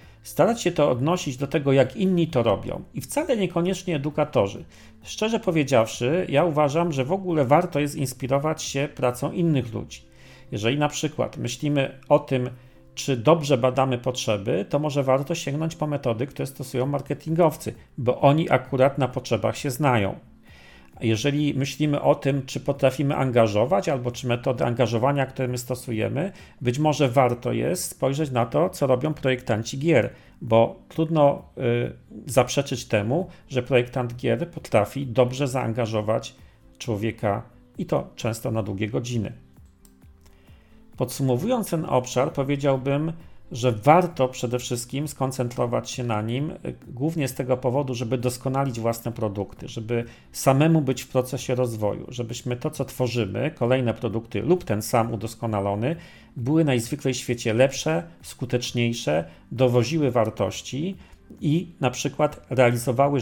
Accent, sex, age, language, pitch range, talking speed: native, male, 40-59, Polish, 120-145 Hz, 135 wpm